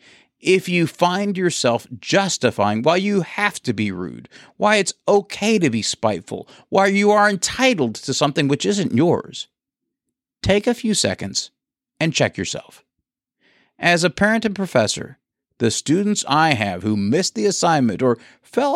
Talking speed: 155 wpm